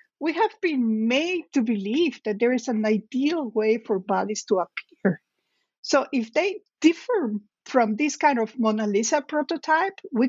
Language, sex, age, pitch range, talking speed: English, female, 50-69, 220-300 Hz, 165 wpm